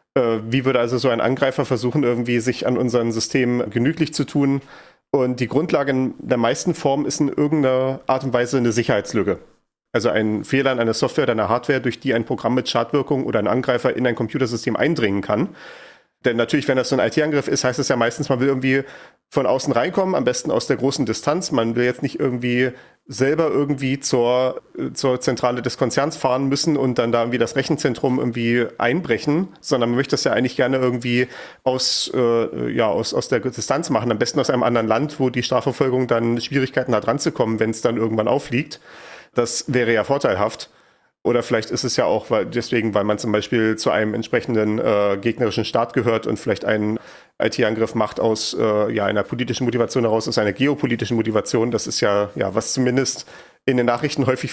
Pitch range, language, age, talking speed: 115-135 Hz, German, 40-59, 200 wpm